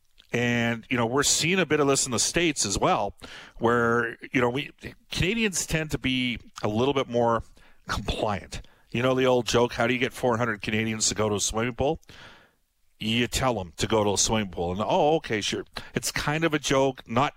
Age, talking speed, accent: 50-69, 220 wpm, American